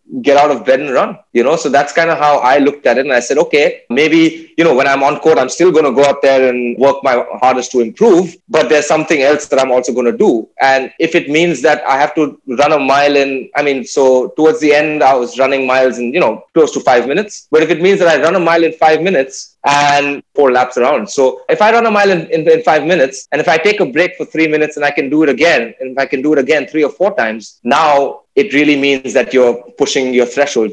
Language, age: English, 20-39